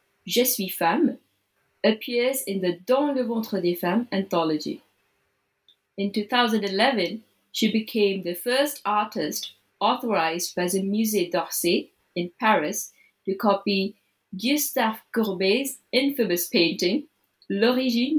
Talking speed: 110 wpm